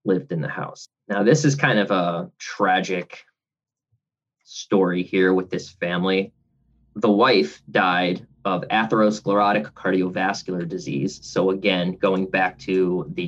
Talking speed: 130 wpm